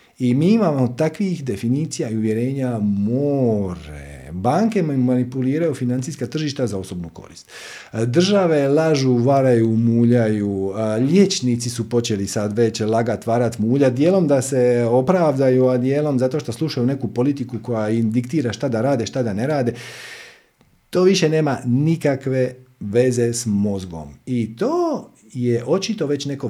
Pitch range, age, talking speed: 120-170 Hz, 50-69, 140 wpm